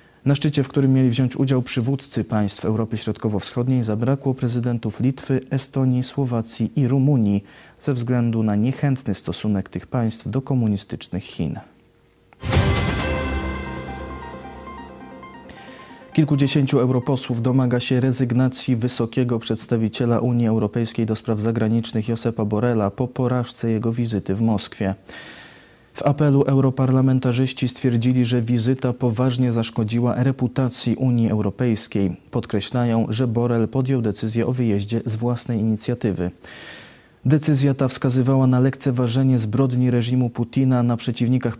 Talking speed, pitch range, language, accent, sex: 115 wpm, 110-130 Hz, Polish, native, male